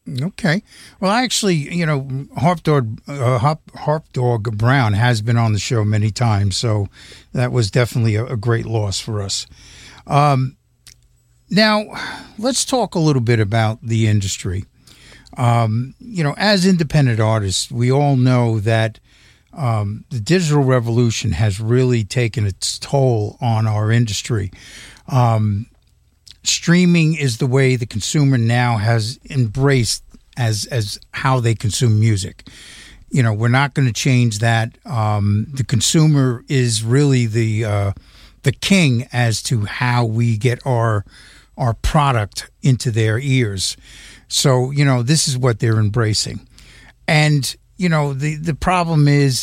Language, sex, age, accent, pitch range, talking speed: English, male, 50-69, American, 110-140 Hz, 145 wpm